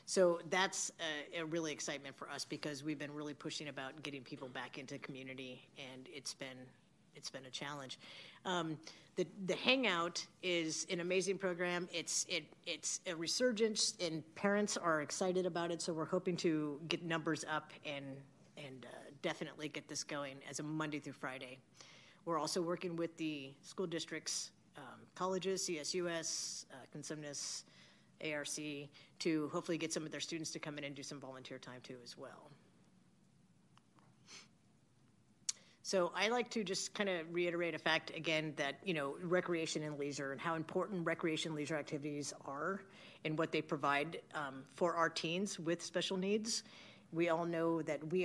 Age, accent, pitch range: 40-59, American, 145-175 Hz